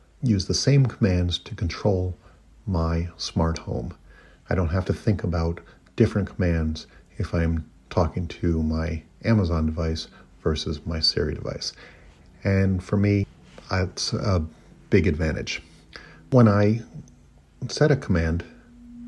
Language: English